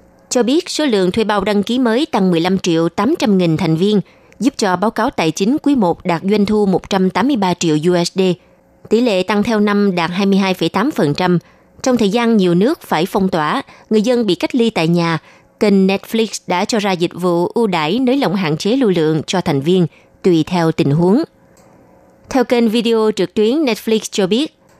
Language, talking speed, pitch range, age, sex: Vietnamese, 200 wpm, 175-225 Hz, 20-39, female